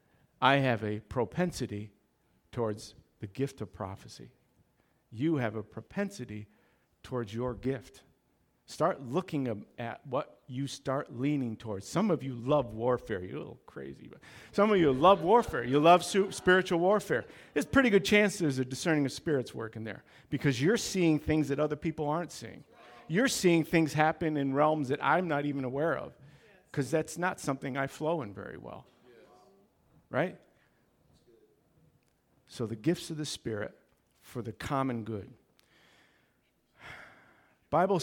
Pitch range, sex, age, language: 115-155 Hz, male, 50-69, English